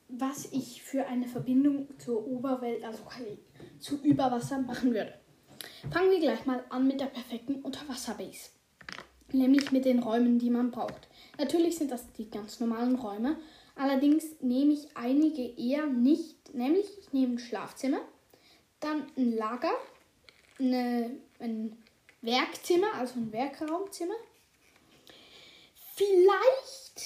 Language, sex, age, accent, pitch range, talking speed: German, female, 10-29, German, 235-285 Hz, 125 wpm